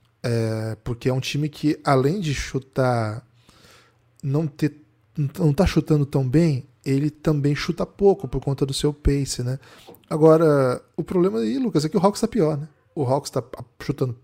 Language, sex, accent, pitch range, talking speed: Portuguese, male, Brazilian, 120-155 Hz, 175 wpm